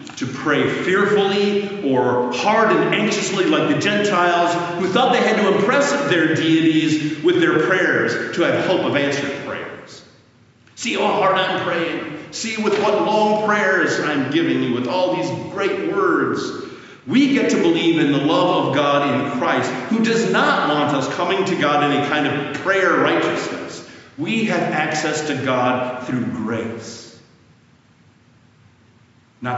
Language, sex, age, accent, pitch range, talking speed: English, male, 50-69, American, 120-180 Hz, 160 wpm